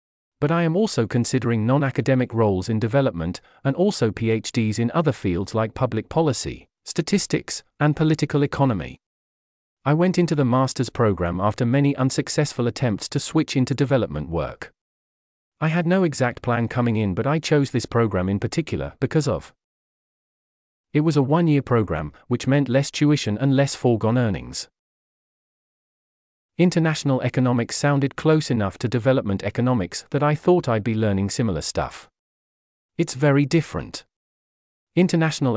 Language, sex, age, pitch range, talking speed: English, male, 40-59, 110-145 Hz, 145 wpm